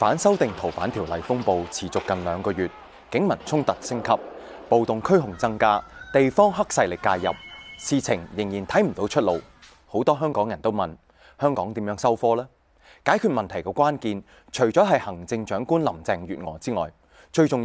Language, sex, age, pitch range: Chinese, male, 30-49, 90-140 Hz